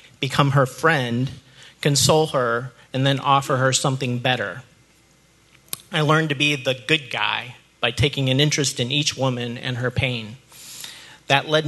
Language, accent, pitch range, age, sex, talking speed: English, American, 125-145 Hz, 40-59, male, 155 wpm